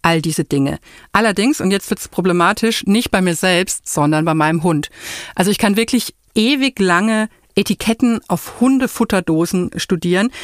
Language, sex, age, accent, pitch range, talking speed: German, female, 50-69, German, 170-230 Hz, 155 wpm